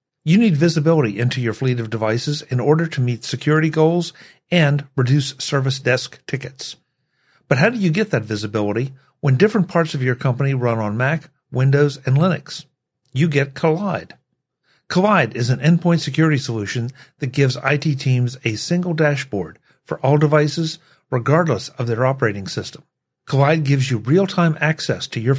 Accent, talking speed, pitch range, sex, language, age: American, 165 wpm, 130-160 Hz, male, English, 50-69